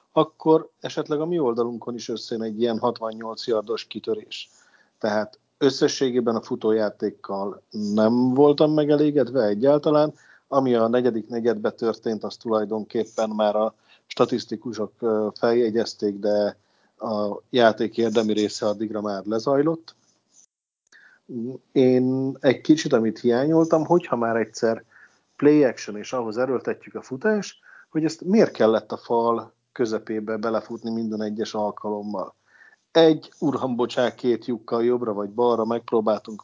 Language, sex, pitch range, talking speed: Hungarian, male, 110-135 Hz, 120 wpm